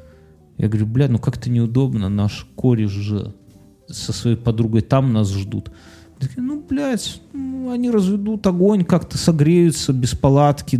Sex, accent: male, native